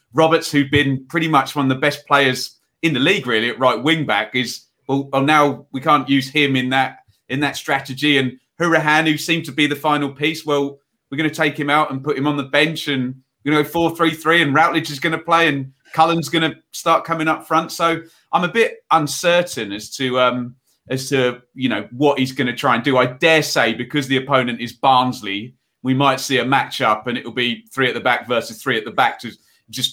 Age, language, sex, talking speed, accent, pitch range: 30-49, English, male, 230 wpm, British, 125-150 Hz